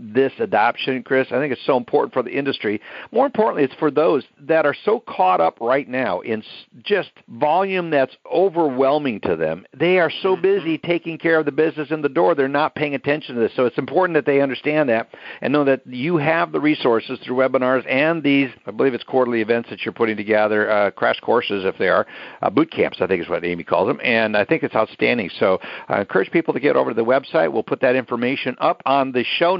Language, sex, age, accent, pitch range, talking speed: English, male, 60-79, American, 130-170 Hz, 230 wpm